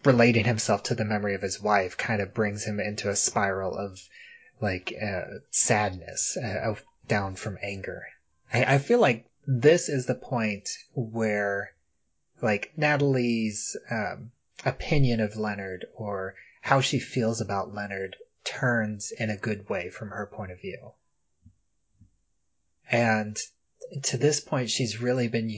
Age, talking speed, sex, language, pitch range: 30-49, 145 wpm, male, English, 100-125 Hz